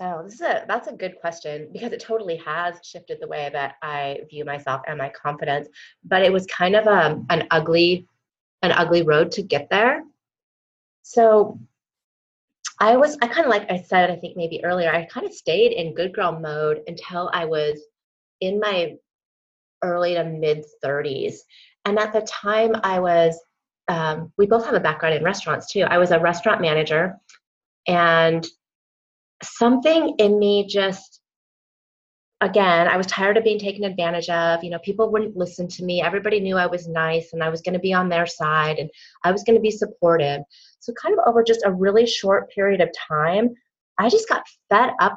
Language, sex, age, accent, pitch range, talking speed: English, female, 30-49, American, 165-215 Hz, 190 wpm